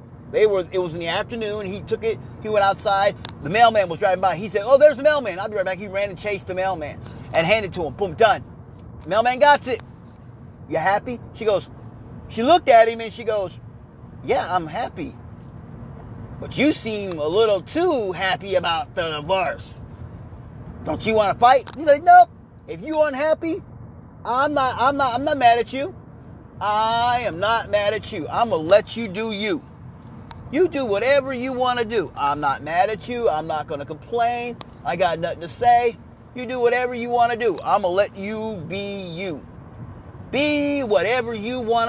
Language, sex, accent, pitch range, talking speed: English, male, American, 165-260 Hz, 195 wpm